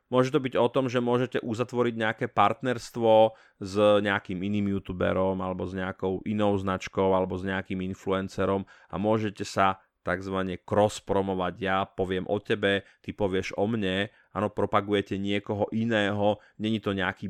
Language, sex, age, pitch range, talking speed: Slovak, male, 30-49, 95-110 Hz, 150 wpm